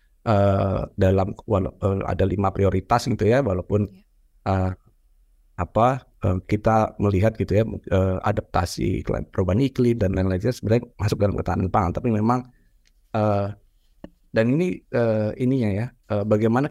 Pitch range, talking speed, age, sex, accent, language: 95-115 Hz, 130 wpm, 20-39, male, native, Indonesian